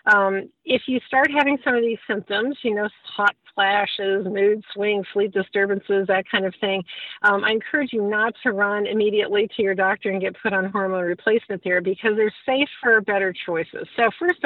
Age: 50-69